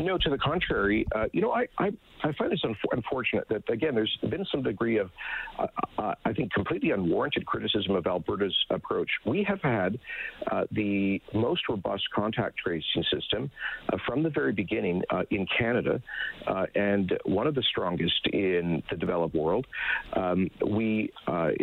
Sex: male